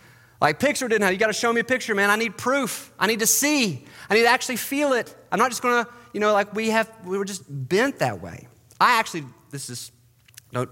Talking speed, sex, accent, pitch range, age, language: 245 wpm, male, American, 115-160 Hz, 30-49, English